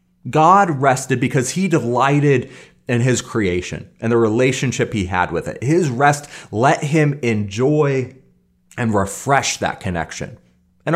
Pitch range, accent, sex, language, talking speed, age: 110-155 Hz, American, male, English, 135 wpm, 30-49